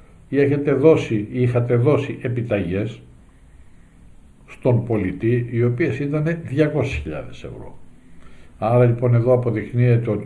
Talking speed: 100 wpm